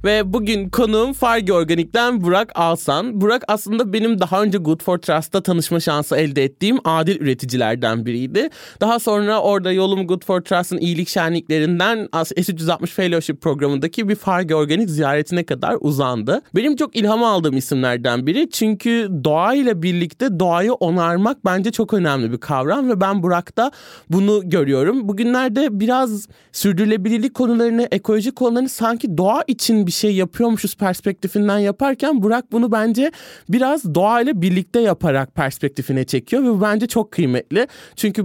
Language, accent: Turkish, native